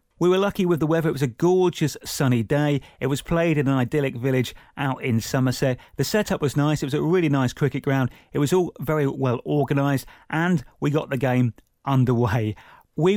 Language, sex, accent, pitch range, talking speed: English, male, British, 130-160 Hz, 210 wpm